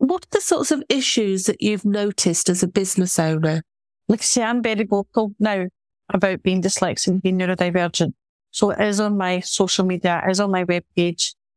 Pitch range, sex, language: 180-205 Hz, female, English